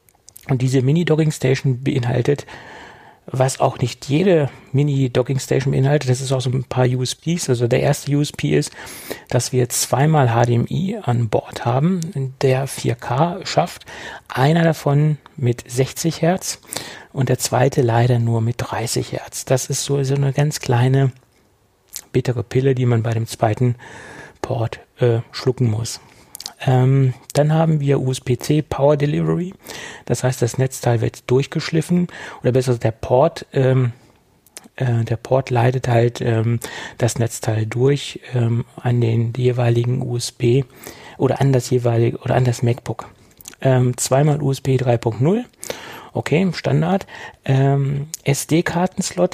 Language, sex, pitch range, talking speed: German, male, 120-145 Hz, 135 wpm